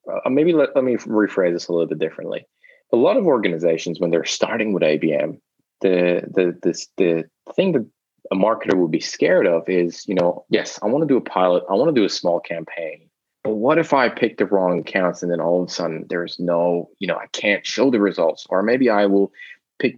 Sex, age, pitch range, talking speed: male, 20-39, 90-125 Hz, 230 wpm